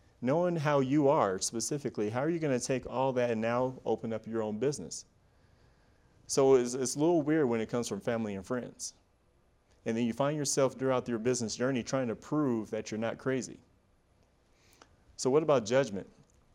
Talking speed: 190 wpm